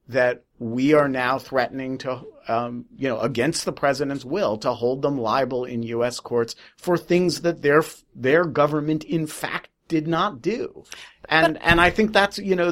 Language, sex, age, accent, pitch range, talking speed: English, male, 50-69, American, 125-155 Hz, 180 wpm